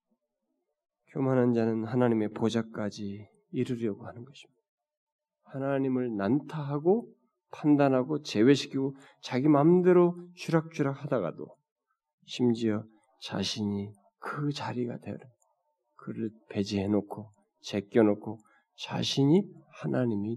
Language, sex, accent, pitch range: Korean, male, native, 110-180 Hz